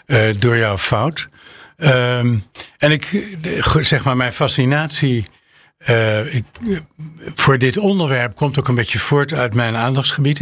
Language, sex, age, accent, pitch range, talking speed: English, male, 60-79, Dutch, 120-150 Hz, 120 wpm